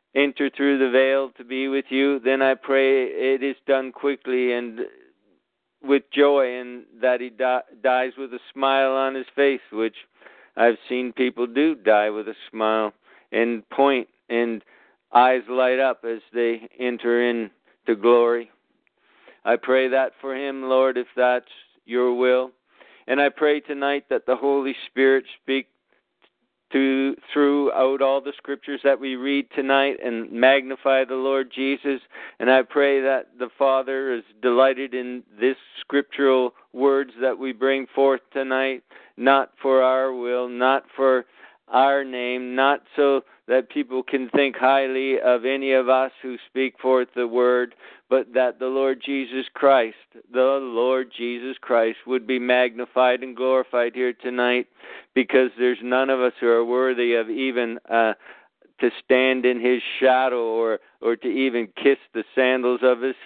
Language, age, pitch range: English, 50-69, 120-135 Hz